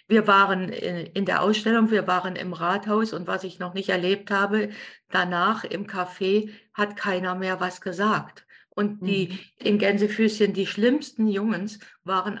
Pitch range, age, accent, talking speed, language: 190-225 Hz, 50-69, German, 155 wpm, German